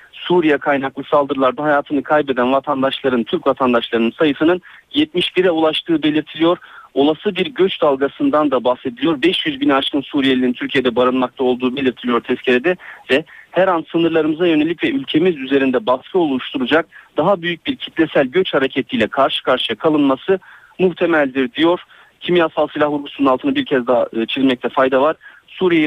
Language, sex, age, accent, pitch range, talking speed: Turkish, male, 40-59, native, 135-185 Hz, 135 wpm